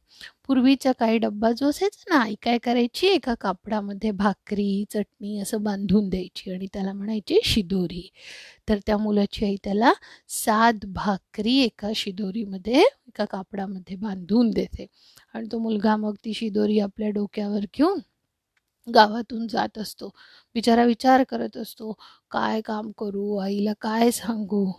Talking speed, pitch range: 135 wpm, 205-255 Hz